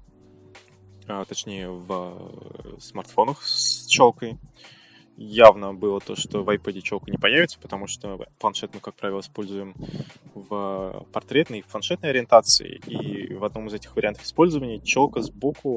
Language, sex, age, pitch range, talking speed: Russian, male, 20-39, 100-120 Hz, 135 wpm